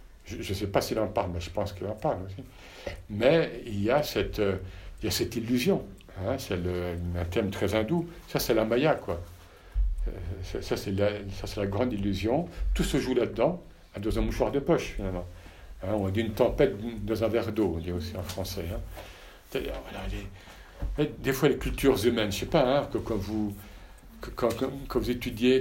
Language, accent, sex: French, French, male